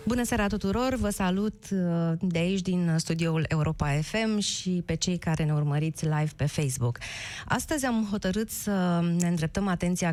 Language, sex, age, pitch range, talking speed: Romanian, female, 20-39, 155-190 Hz, 160 wpm